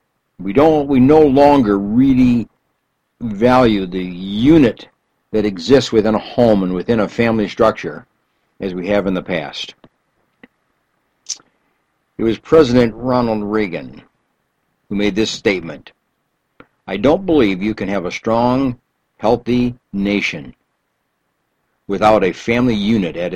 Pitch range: 100-130 Hz